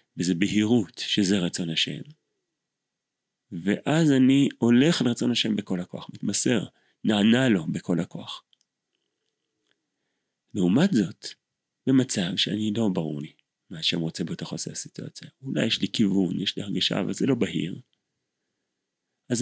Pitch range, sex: 95-130 Hz, male